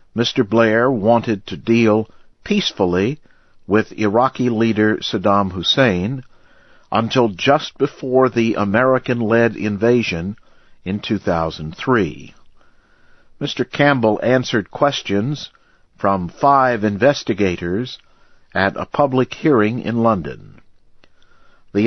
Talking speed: 90 wpm